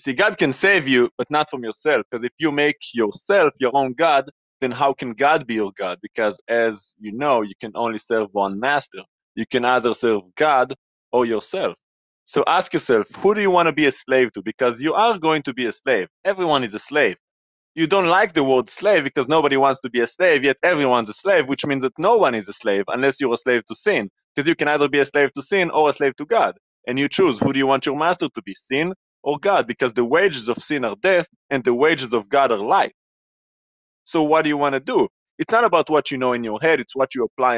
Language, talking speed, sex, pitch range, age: English, 250 wpm, male, 125-160 Hz, 30-49